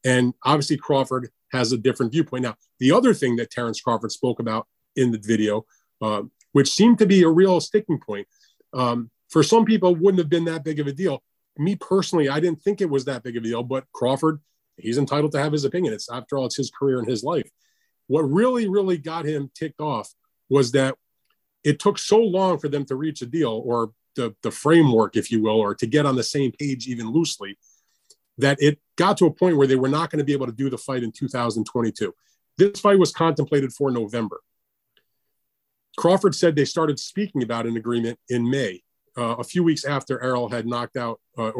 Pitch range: 120-160 Hz